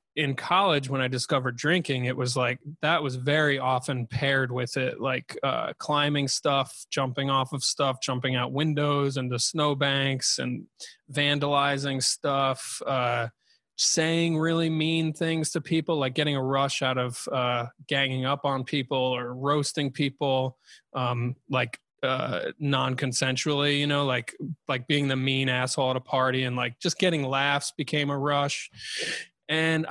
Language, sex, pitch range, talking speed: English, male, 130-160 Hz, 155 wpm